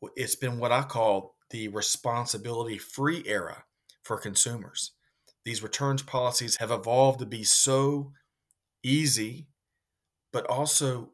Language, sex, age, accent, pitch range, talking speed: English, male, 40-59, American, 110-135 Hz, 115 wpm